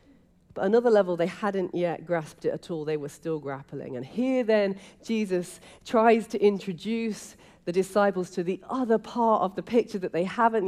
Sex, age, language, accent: female, 40-59, English, British